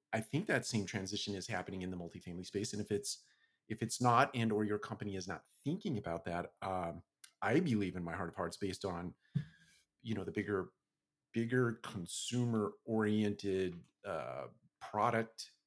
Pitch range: 90-115 Hz